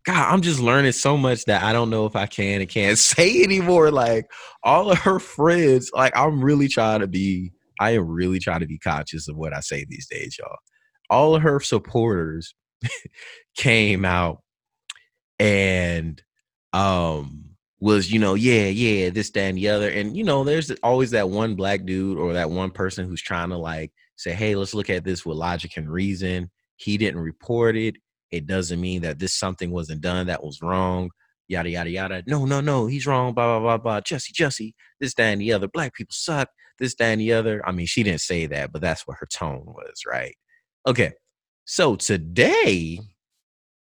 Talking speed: 200 wpm